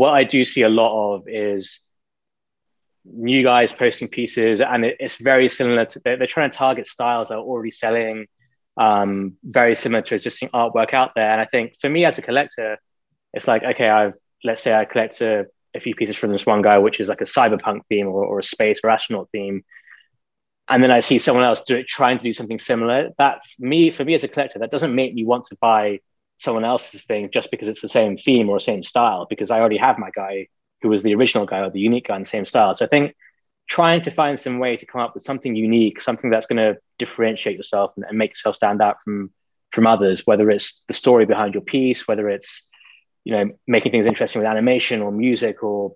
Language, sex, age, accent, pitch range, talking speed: English, male, 20-39, British, 105-125 Hz, 230 wpm